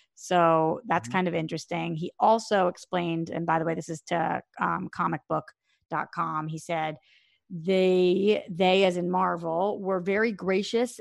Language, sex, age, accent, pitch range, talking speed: English, female, 30-49, American, 175-200 Hz, 145 wpm